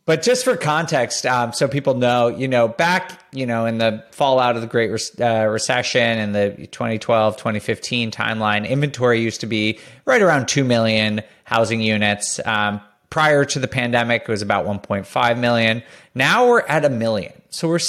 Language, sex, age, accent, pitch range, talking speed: English, male, 30-49, American, 115-165 Hz, 175 wpm